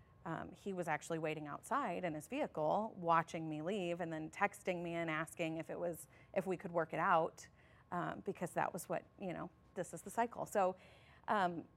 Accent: American